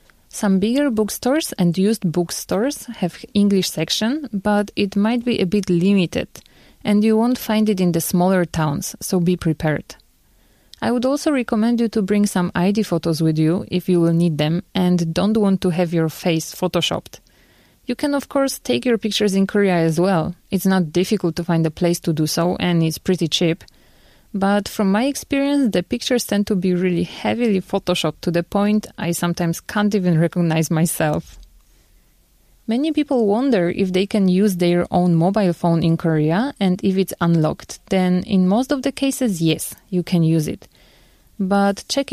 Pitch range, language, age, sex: 170-215 Hz, Korean, 20-39, female